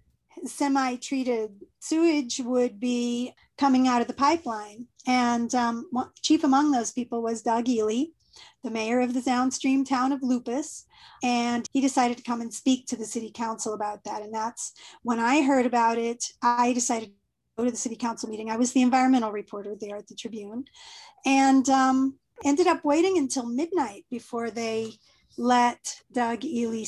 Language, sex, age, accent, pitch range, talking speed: English, female, 40-59, American, 230-270 Hz, 170 wpm